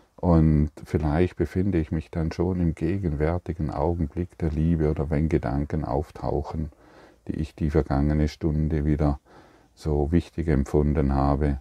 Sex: male